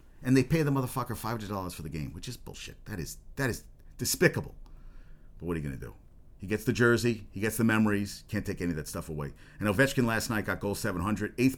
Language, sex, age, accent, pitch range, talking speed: English, male, 40-59, American, 95-125 Hz, 245 wpm